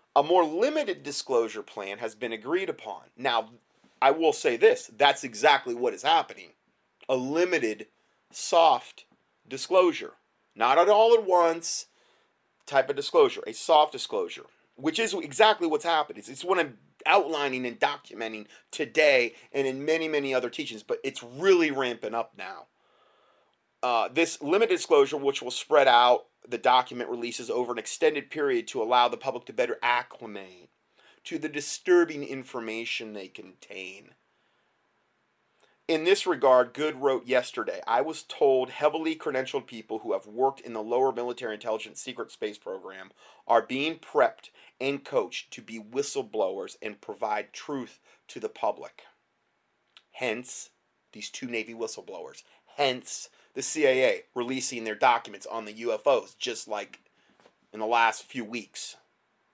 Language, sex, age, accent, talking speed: English, male, 30-49, American, 145 wpm